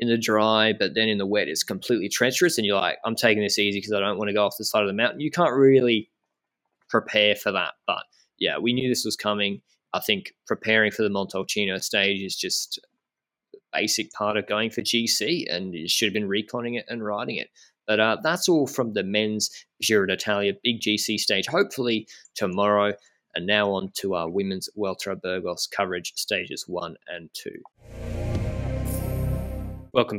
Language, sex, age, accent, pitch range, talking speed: English, male, 20-39, Australian, 95-110 Hz, 190 wpm